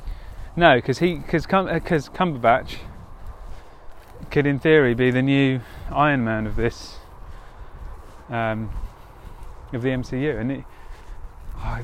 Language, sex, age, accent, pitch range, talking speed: English, male, 30-49, British, 100-140 Hz, 100 wpm